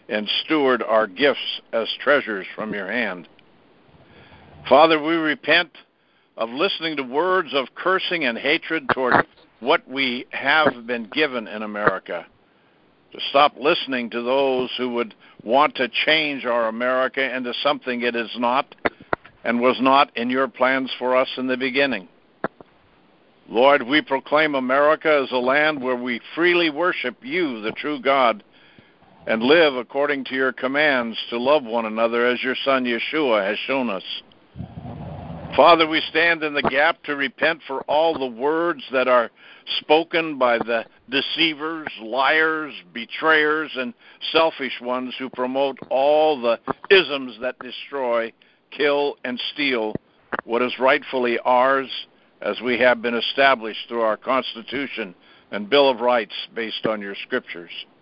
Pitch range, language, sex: 120-150 Hz, English, male